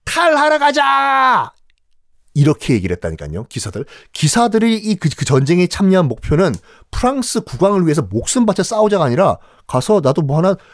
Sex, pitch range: male, 125-205 Hz